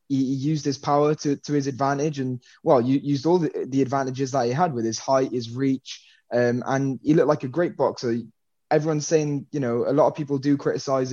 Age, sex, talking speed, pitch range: 20-39, male, 220 wpm, 125-145 Hz